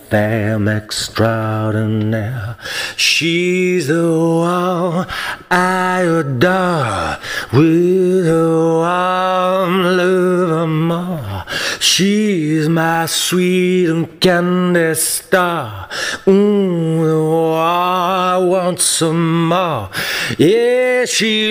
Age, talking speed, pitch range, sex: 40-59, 75 wpm, 155-185 Hz, male